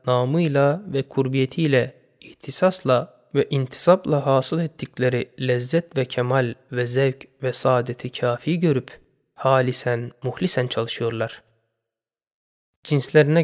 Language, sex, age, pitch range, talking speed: Turkish, male, 20-39, 125-155 Hz, 95 wpm